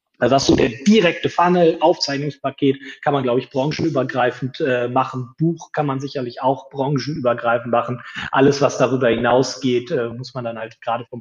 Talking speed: 175 wpm